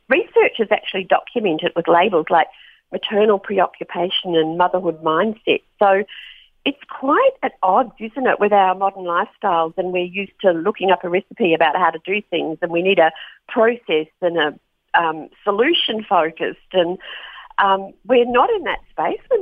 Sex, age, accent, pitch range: female, 50-69, Australian, 170-225 Hz